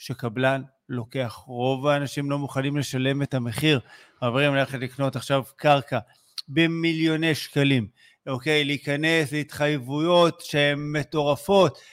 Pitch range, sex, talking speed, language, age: 140-175 Hz, male, 105 wpm, Hebrew, 50-69